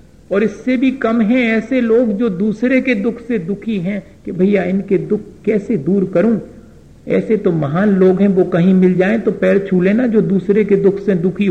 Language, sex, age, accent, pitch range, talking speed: Hindi, male, 50-69, native, 185-230 Hz, 210 wpm